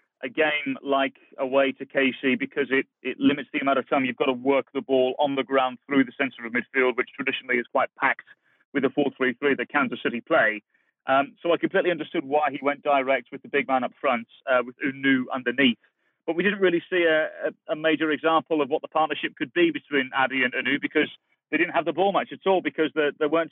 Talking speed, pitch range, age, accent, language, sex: 230 wpm, 135-165 Hz, 30-49, British, English, male